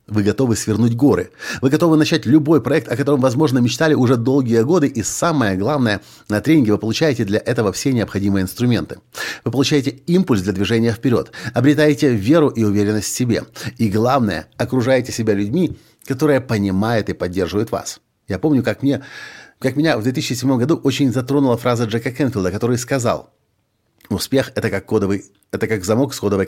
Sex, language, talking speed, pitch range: male, Russian, 170 wpm, 105-135 Hz